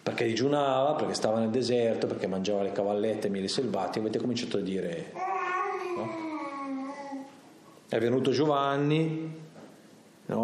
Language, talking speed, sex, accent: Italian, 130 wpm, male, native